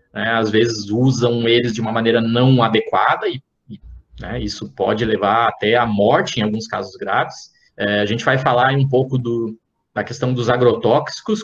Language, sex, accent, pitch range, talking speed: Portuguese, male, Brazilian, 115-145 Hz, 165 wpm